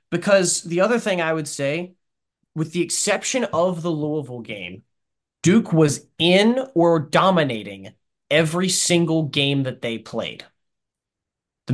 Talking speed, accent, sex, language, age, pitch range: 135 wpm, American, male, English, 20-39, 135-180 Hz